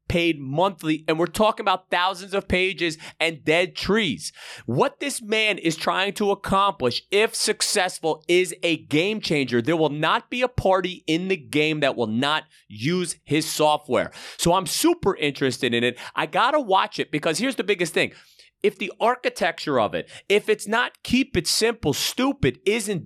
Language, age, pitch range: English, 30-49, 155-215 Hz